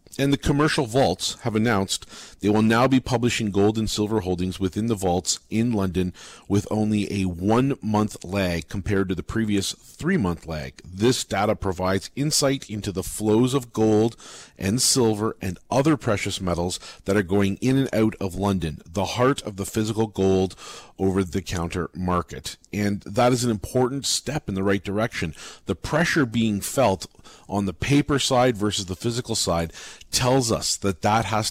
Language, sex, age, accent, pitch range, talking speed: English, male, 40-59, American, 95-120 Hz, 175 wpm